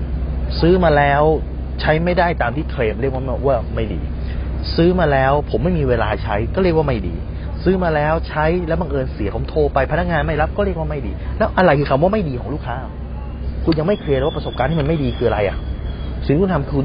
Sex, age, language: male, 30-49, Thai